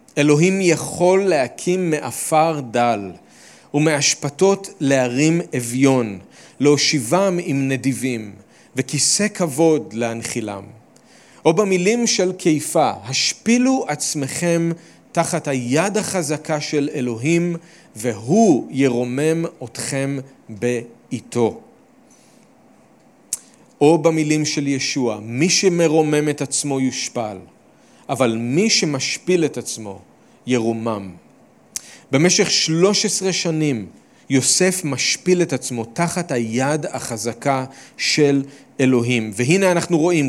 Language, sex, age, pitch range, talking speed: Hebrew, male, 40-59, 130-175 Hz, 90 wpm